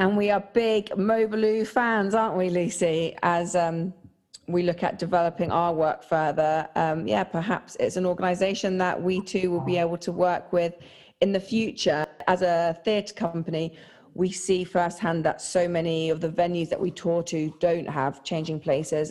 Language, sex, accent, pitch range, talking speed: English, female, British, 160-185 Hz, 180 wpm